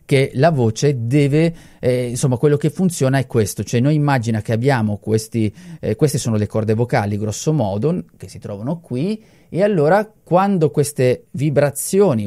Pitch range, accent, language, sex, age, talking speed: 115-155 Hz, native, Italian, male, 30-49, 165 wpm